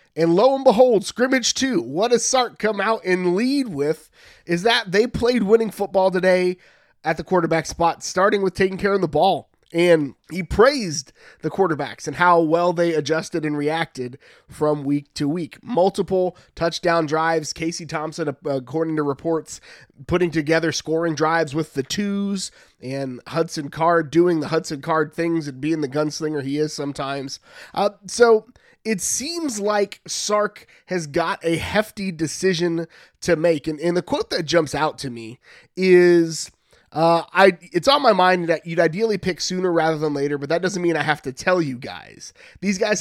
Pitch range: 150-190 Hz